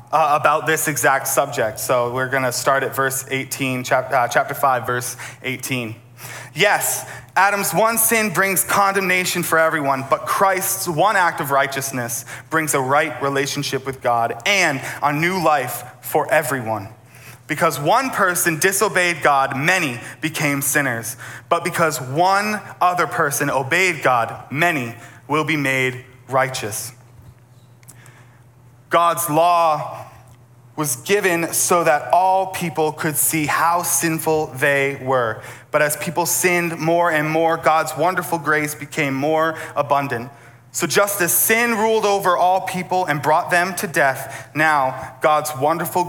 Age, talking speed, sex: 20-39, 140 wpm, male